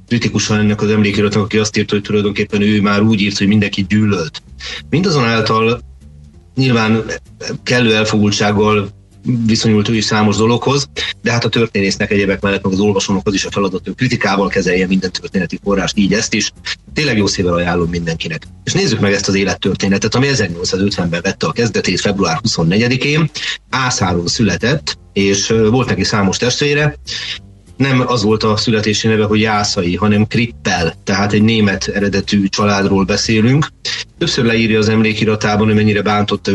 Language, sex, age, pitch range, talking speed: Hungarian, male, 30-49, 100-110 Hz, 155 wpm